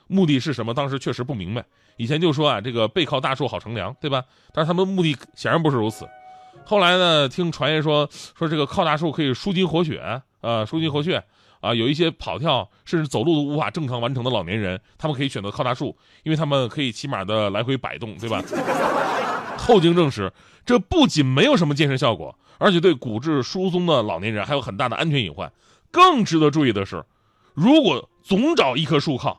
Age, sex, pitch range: 20-39, male, 120-180 Hz